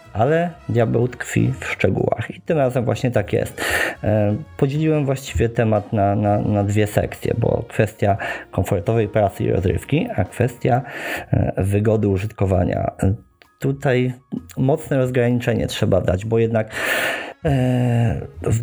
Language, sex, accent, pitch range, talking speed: Polish, male, native, 100-125 Hz, 115 wpm